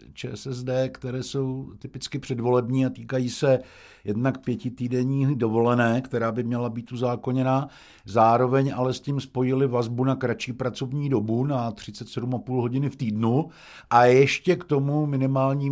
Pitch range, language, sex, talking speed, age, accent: 105-130 Hz, Czech, male, 135 wpm, 60-79, native